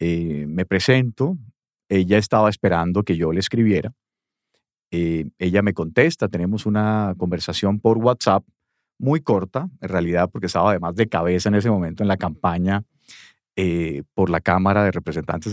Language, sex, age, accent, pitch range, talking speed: English, male, 40-59, Colombian, 90-115 Hz, 155 wpm